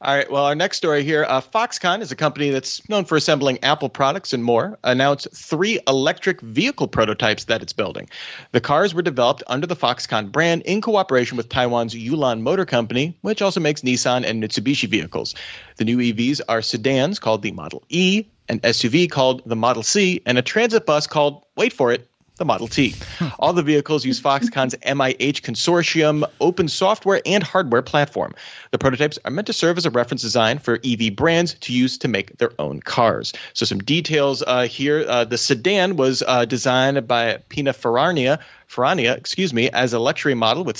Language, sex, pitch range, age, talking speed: English, male, 120-155 Hz, 30-49, 190 wpm